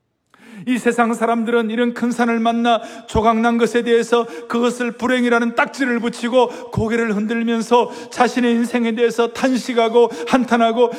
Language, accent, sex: Korean, native, male